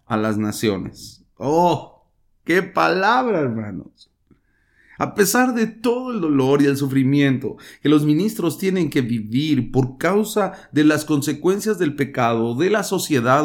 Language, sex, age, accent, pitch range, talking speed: English, male, 40-59, Mexican, 110-145 Hz, 145 wpm